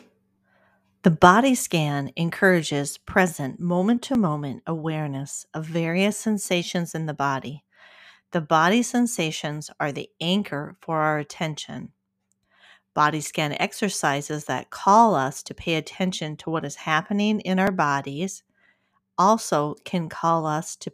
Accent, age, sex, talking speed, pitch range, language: American, 40-59, female, 125 wpm, 150-190 Hz, English